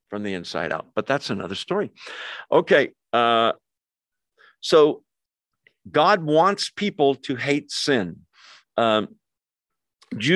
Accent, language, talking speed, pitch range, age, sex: American, English, 105 wpm, 115-155 Hz, 50-69, male